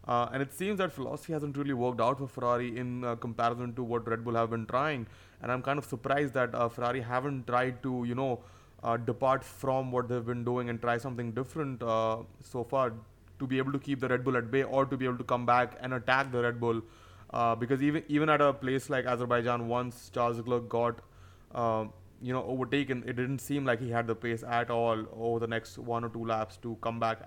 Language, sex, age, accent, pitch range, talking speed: English, male, 30-49, Indian, 115-130 Hz, 240 wpm